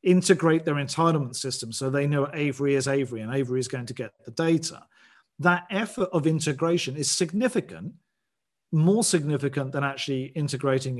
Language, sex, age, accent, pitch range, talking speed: English, male, 40-59, British, 135-170 Hz, 160 wpm